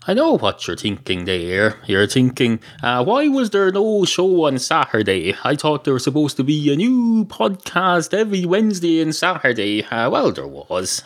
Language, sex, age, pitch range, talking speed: English, male, 30-49, 115-180 Hz, 185 wpm